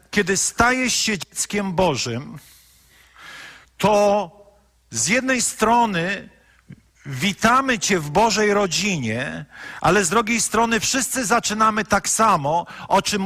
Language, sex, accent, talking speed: Polish, male, native, 110 wpm